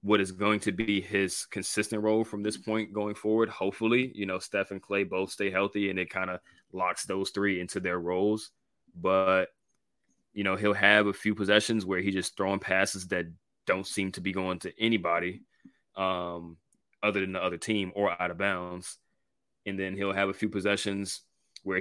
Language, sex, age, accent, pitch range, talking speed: English, male, 20-39, American, 95-105 Hz, 195 wpm